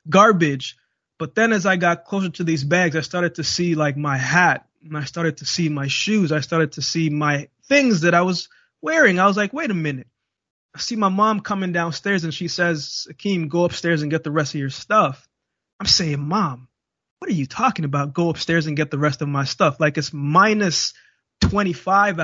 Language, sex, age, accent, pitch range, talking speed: English, male, 20-39, American, 150-180 Hz, 215 wpm